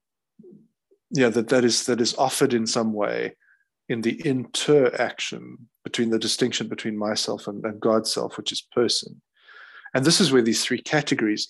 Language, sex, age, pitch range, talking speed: English, male, 20-39, 105-120 Hz, 165 wpm